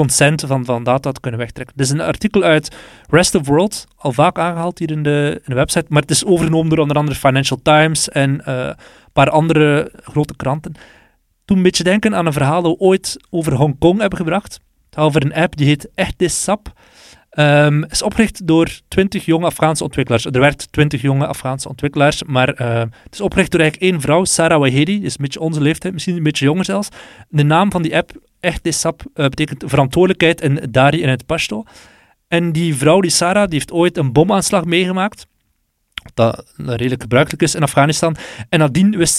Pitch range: 140-175 Hz